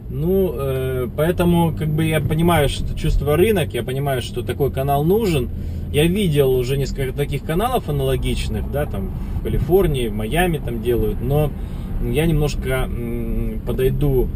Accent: native